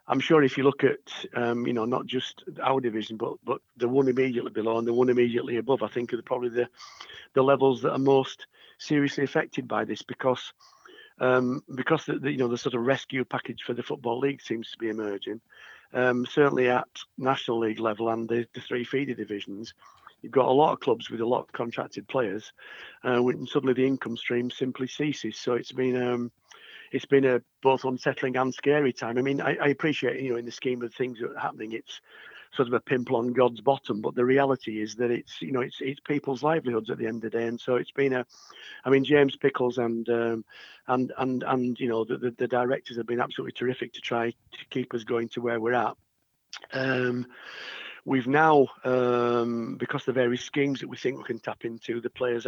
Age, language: 50-69, English